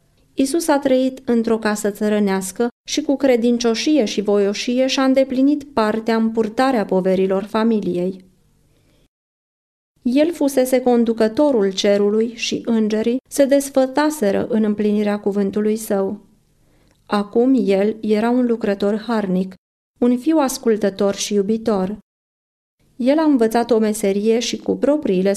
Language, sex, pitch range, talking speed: Romanian, female, 205-255 Hz, 115 wpm